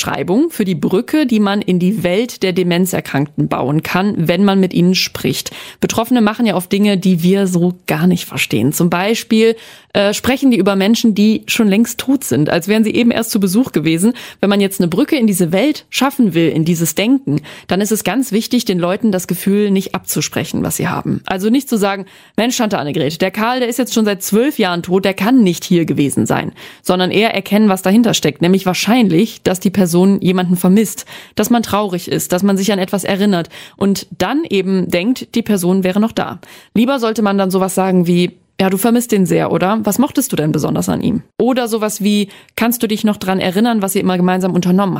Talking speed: 220 wpm